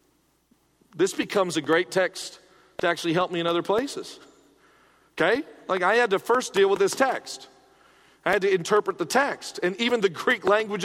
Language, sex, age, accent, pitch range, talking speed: English, male, 40-59, American, 145-225 Hz, 185 wpm